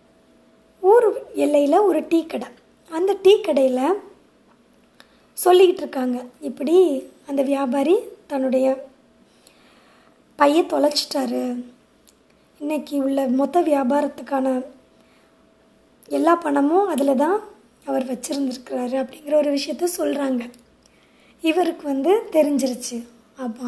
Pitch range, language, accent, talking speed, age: 265-335 Hz, Tamil, native, 85 wpm, 20-39